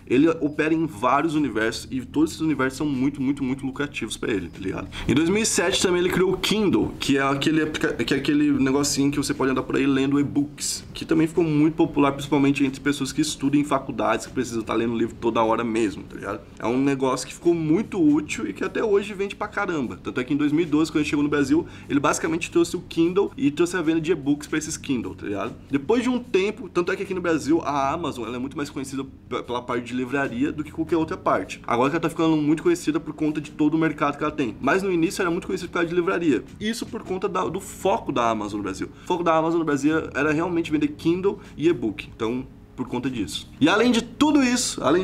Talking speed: 245 wpm